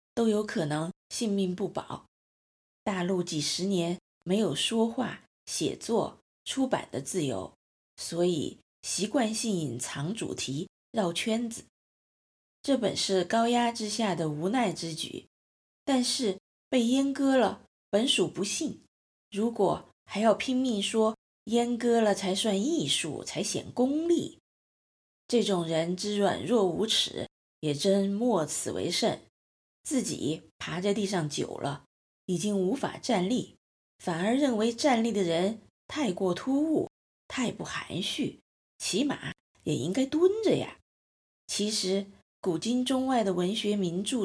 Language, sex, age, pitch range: Chinese, female, 20-39, 185-245 Hz